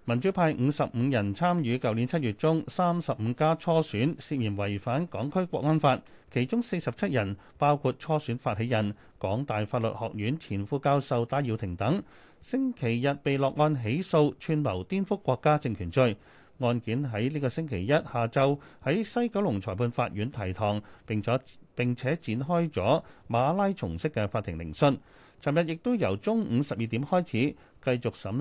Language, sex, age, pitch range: Chinese, male, 30-49, 110-155 Hz